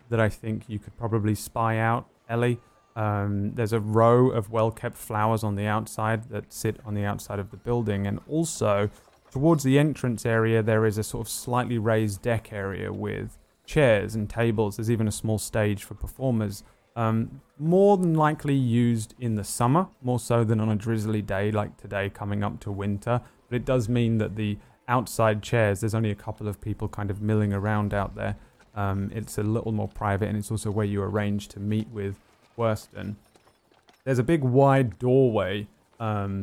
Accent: British